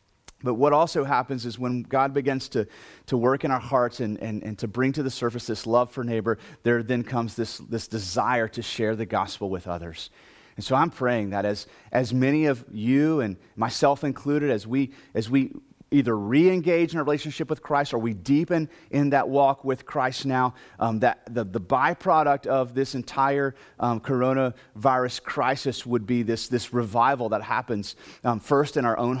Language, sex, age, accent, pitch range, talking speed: English, male, 30-49, American, 115-135 Hz, 195 wpm